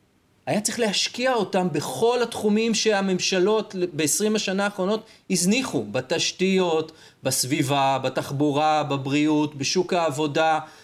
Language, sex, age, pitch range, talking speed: Hebrew, male, 30-49, 135-205 Hz, 95 wpm